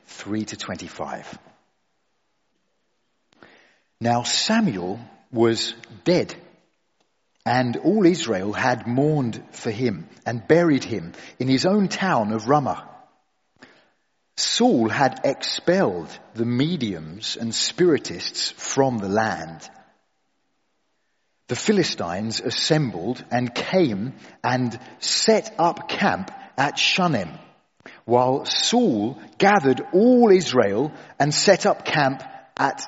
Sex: male